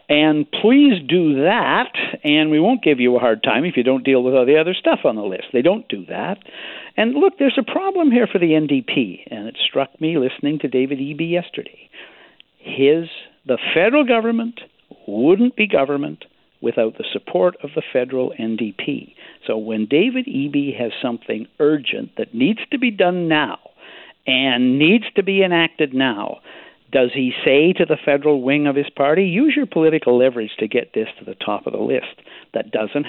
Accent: American